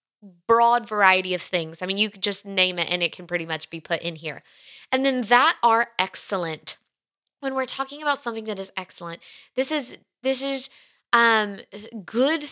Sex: female